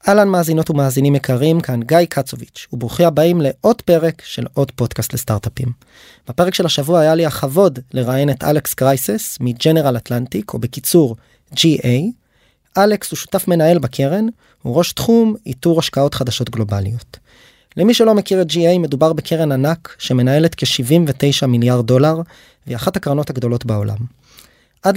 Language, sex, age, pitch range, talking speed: Hebrew, male, 20-39, 130-170 Hz, 150 wpm